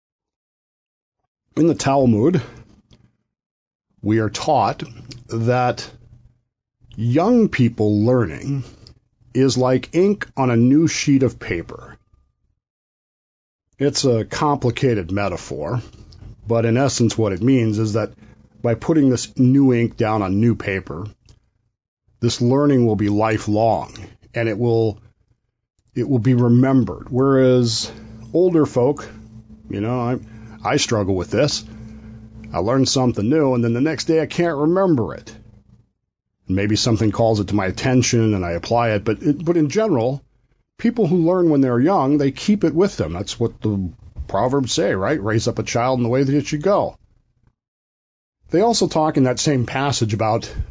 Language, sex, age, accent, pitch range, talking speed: English, male, 50-69, American, 110-135 Hz, 150 wpm